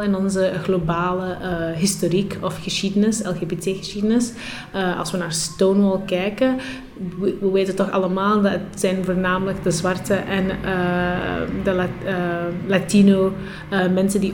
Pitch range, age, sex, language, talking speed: 180-205 Hz, 20-39, female, Dutch, 140 wpm